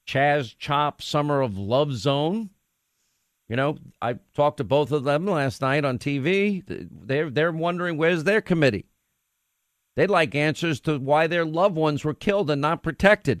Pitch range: 145-195 Hz